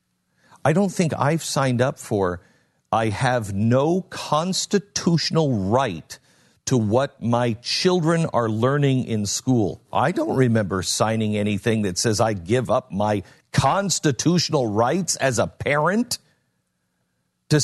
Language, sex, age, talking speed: English, male, 50-69, 125 wpm